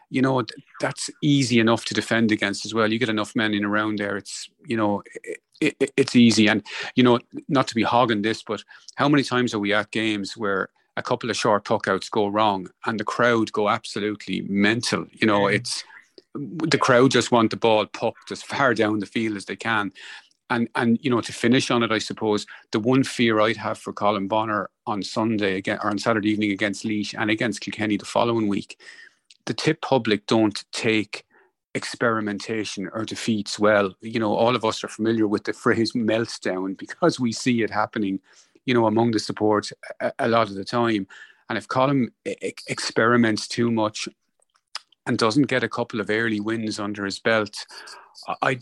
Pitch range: 105-120 Hz